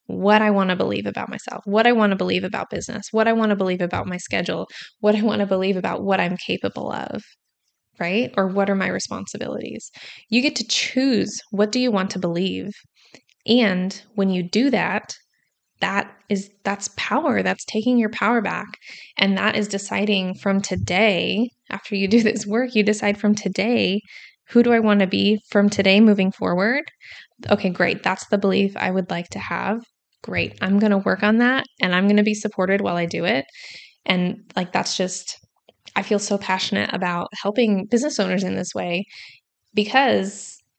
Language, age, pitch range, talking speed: English, 20-39, 190-220 Hz, 190 wpm